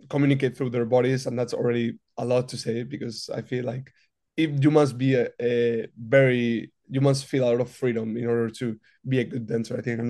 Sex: male